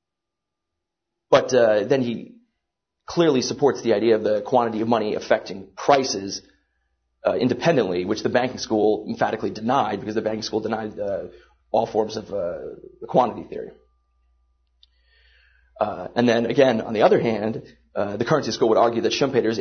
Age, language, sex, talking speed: 30-49, English, male, 160 wpm